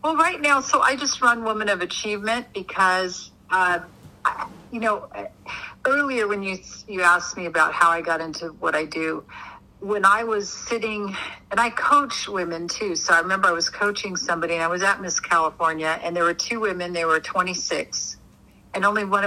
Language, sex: English, female